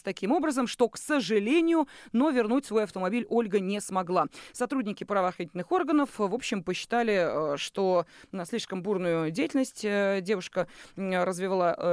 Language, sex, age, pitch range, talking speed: Russian, female, 30-49, 185-260 Hz, 120 wpm